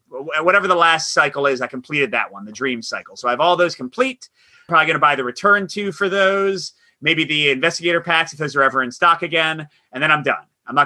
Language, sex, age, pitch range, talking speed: English, male, 30-49, 135-180 Hz, 245 wpm